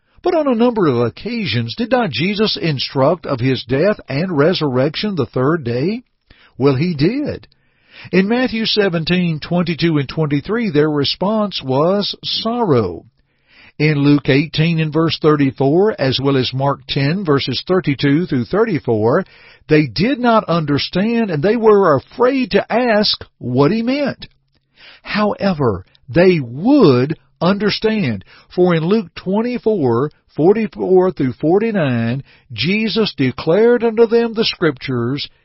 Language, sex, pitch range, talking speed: English, male, 135-205 Hz, 135 wpm